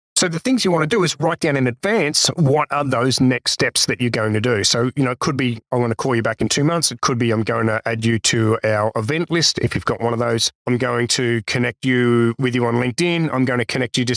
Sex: male